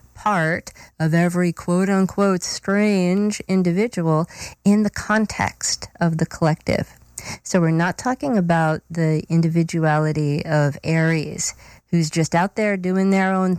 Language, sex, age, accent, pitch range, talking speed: English, female, 40-59, American, 150-185 Hz, 130 wpm